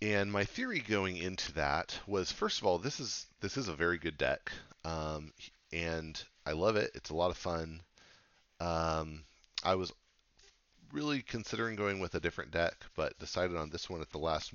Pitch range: 75-100 Hz